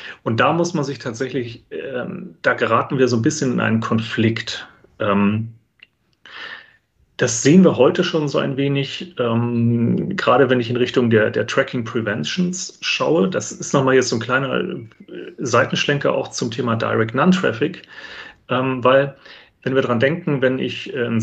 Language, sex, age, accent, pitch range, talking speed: German, male, 40-59, German, 115-145 Hz, 160 wpm